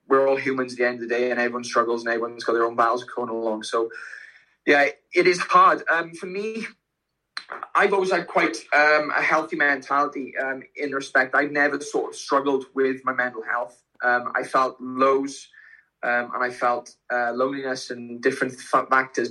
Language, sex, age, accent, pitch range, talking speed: English, male, 20-39, British, 120-135 Hz, 190 wpm